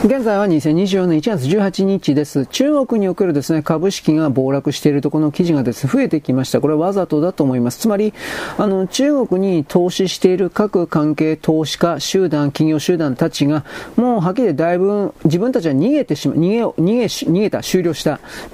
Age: 40-59